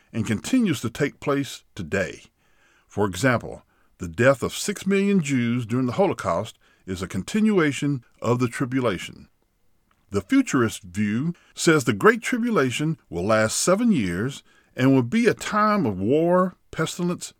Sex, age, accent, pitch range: male, 50-69, American, 115-180 Hz